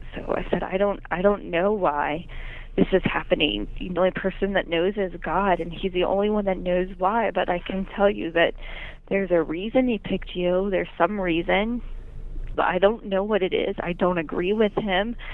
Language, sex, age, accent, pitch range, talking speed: English, female, 20-39, American, 175-195 Hz, 210 wpm